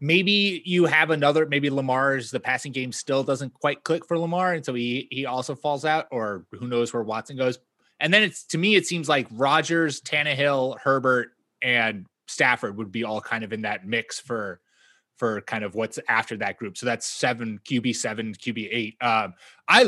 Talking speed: 200 wpm